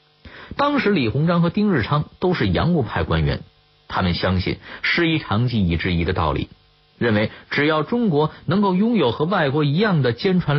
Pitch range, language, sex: 90-150 Hz, Chinese, male